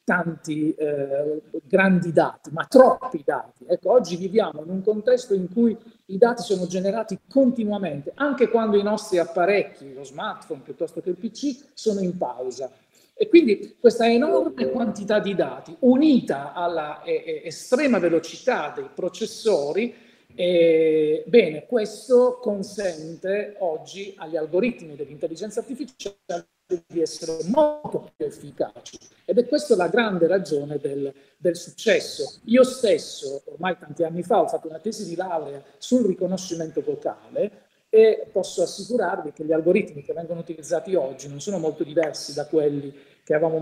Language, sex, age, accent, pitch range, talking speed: Italian, male, 40-59, native, 160-235 Hz, 145 wpm